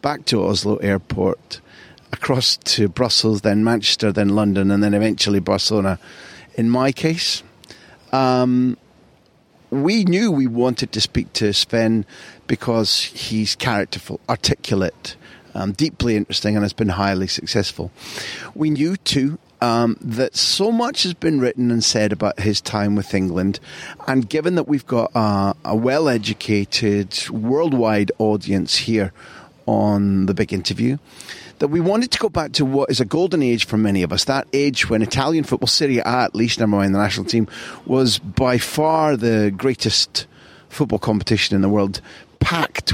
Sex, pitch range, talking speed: male, 105-130 Hz, 155 wpm